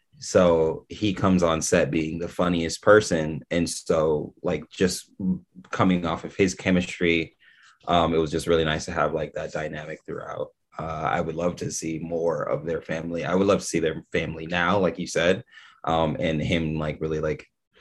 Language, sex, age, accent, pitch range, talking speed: English, male, 20-39, American, 80-100 Hz, 190 wpm